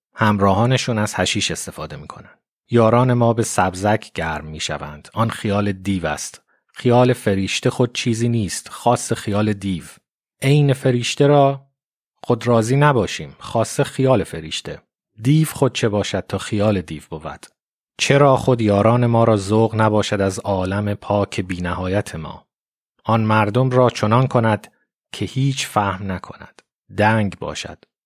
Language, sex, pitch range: Persian, male, 95-125 Hz